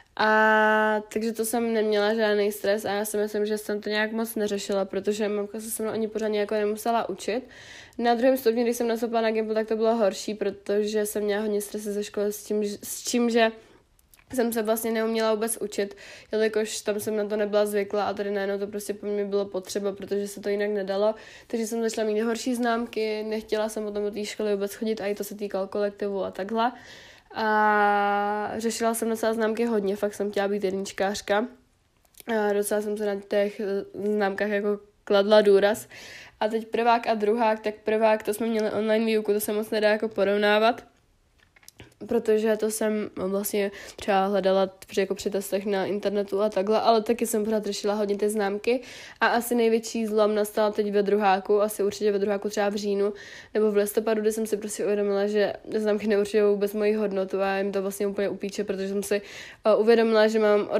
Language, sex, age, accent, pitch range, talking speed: Czech, female, 20-39, native, 205-220 Hz, 200 wpm